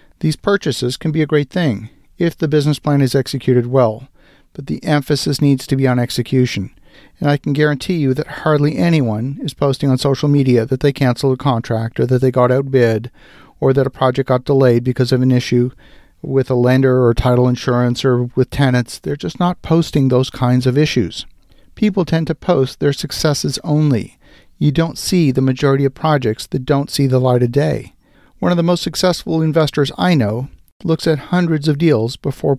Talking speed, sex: 195 wpm, male